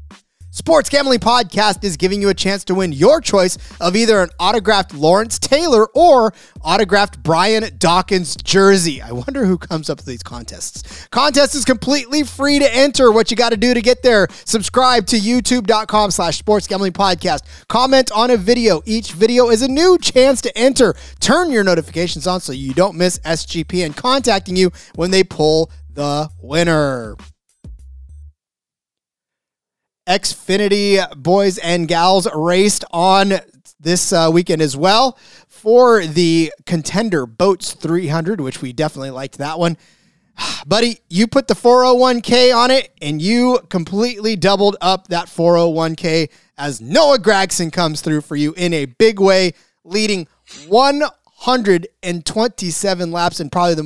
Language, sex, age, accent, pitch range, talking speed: English, male, 30-49, American, 165-225 Hz, 150 wpm